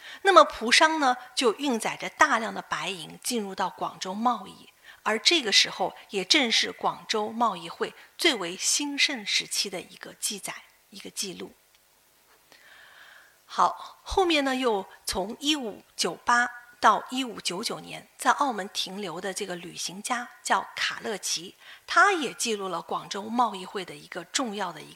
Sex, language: female, Chinese